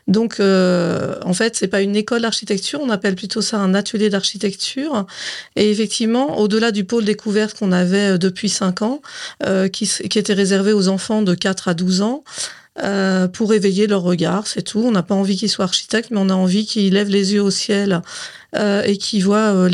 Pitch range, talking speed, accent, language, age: 195-225 Hz, 210 wpm, French, French, 40-59